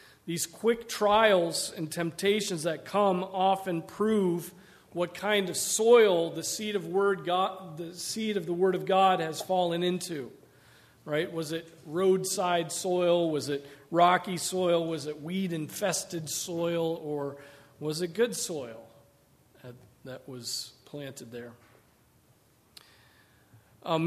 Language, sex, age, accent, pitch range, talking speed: English, male, 40-59, American, 140-190 Hz, 125 wpm